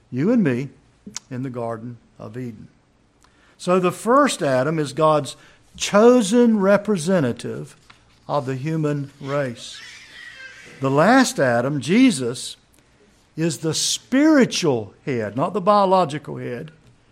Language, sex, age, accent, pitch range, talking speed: English, male, 60-79, American, 145-210 Hz, 110 wpm